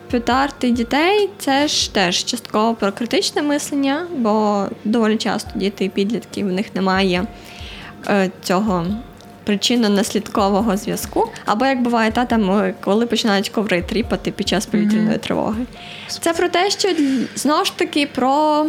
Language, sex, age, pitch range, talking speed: Ukrainian, female, 20-39, 205-260 Hz, 135 wpm